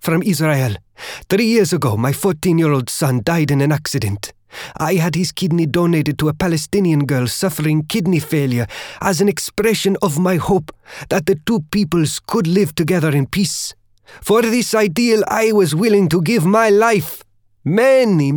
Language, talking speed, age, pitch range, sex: English, 165 wpm, 30-49, 135-195 Hz, male